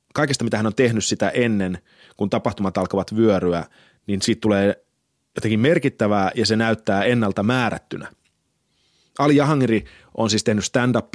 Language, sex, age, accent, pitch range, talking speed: Finnish, male, 30-49, native, 95-115 Hz, 145 wpm